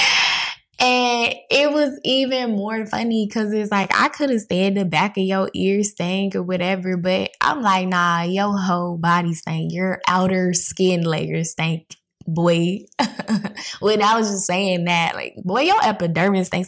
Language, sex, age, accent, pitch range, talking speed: English, female, 10-29, American, 160-200 Hz, 165 wpm